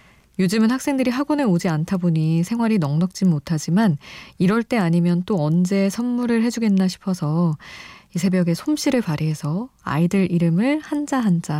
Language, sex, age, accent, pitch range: Korean, female, 20-39, native, 165-225 Hz